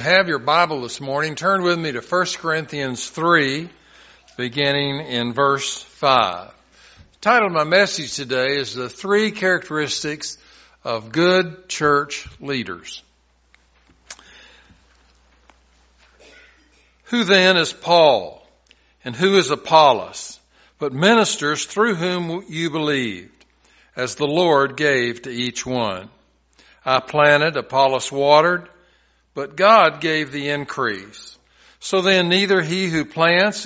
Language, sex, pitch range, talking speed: English, male, 125-175 Hz, 120 wpm